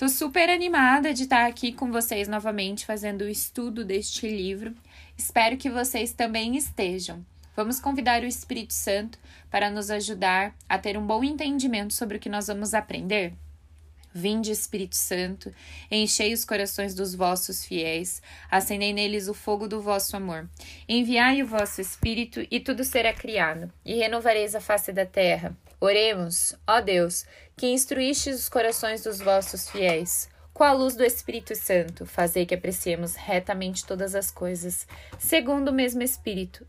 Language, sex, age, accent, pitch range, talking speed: Portuguese, female, 20-39, Brazilian, 190-255 Hz, 155 wpm